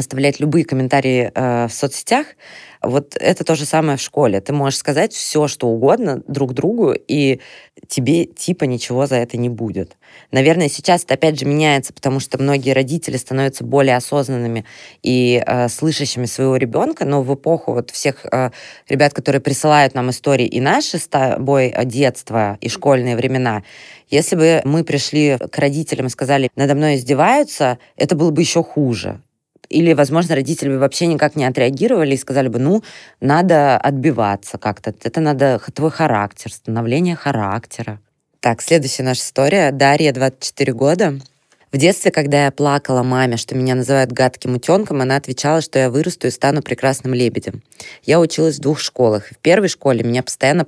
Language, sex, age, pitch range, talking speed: Russian, female, 20-39, 125-150 Hz, 165 wpm